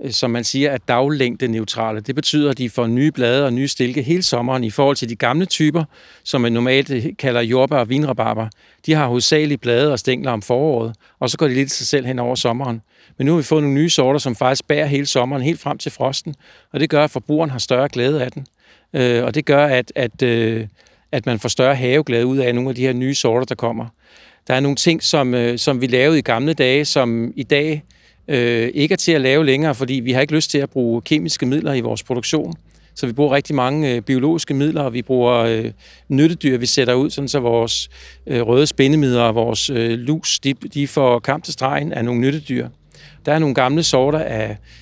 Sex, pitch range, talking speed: male, 120-145 Hz, 230 wpm